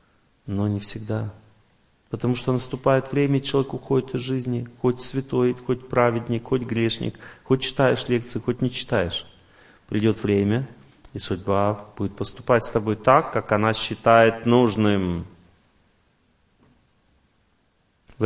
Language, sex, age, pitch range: Russian, male, 30-49, 105-130 Hz